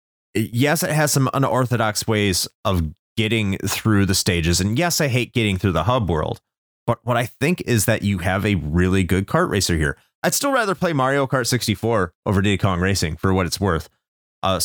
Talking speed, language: 200 wpm, English